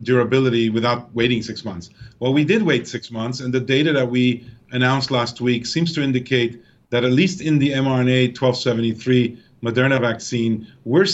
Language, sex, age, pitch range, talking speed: English, male, 40-59, 120-145 Hz, 165 wpm